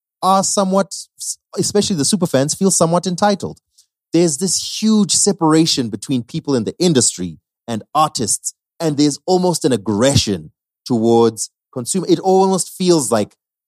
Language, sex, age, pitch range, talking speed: English, male, 30-49, 100-160 Hz, 135 wpm